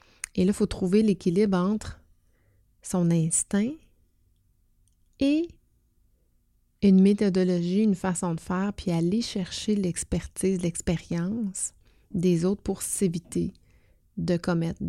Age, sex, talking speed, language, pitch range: 30-49, female, 110 wpm, French, 160-200 Hz